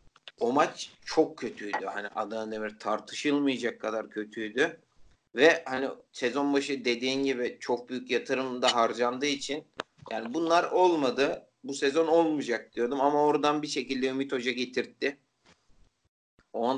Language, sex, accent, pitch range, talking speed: Turkish, male, native, 120-150 Hz, 130 wpm